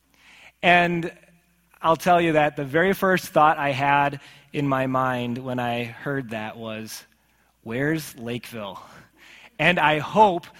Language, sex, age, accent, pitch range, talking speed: English, male, 30-49, American, 145-185 Hz, 135 wpm